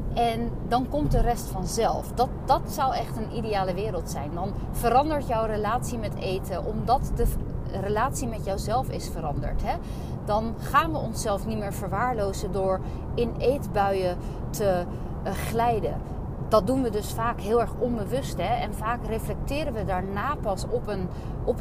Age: 30-49